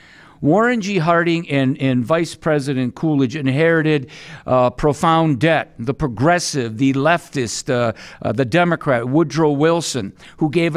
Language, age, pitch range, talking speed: English, 50-69, 140-165 Hz, 135 wpm